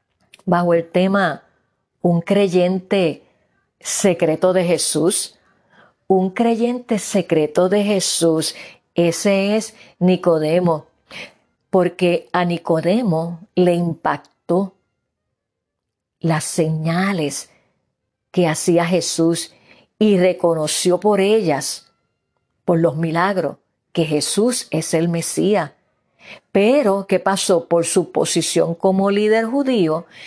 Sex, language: female, Spanish